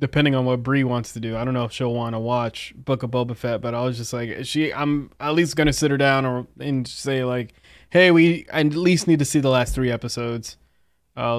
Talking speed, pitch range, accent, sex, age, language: 260 wpm, 120-145 Hz, American, male, 20-39, English